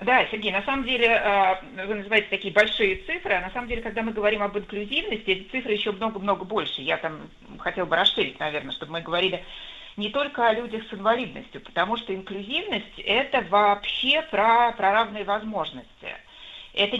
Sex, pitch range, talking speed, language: female, 190-235 Hz, 175 wpm, Russian